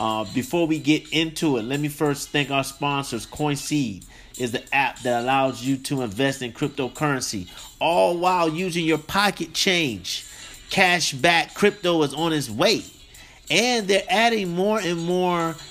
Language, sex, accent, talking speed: English, male, American, 160 wpm